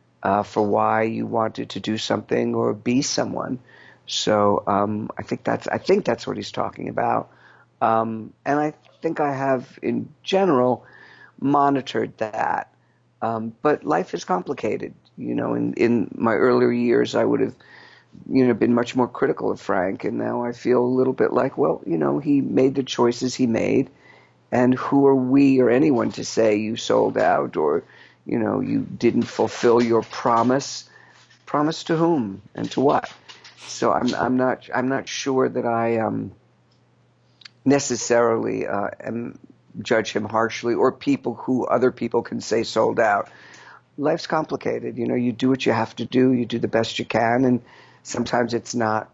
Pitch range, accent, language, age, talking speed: 115-130 Hz, American, English, 50-69, 175 wpm